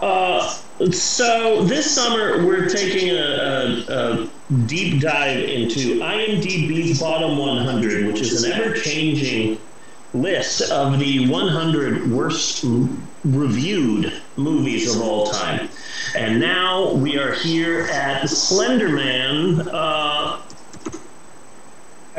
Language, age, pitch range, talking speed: English, 30-49, 130-175 Hz, 95 wpm